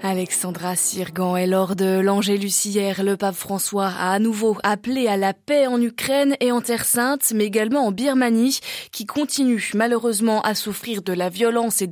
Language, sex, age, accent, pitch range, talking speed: French, female, 20-39, French, 195-245 Hz, 175 wpm